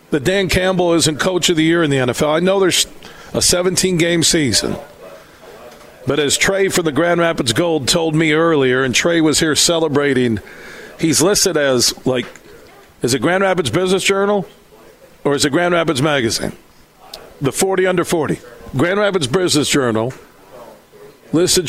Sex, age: male, 50-69